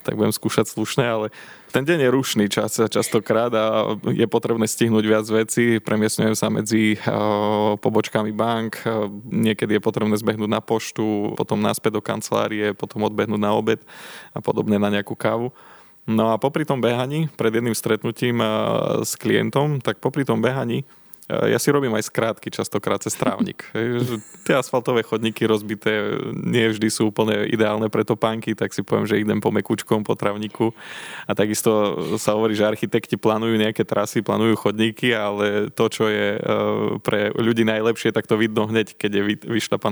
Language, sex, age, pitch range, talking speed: Slovak, male, 20-39, 105-120 Hz, 165 wpm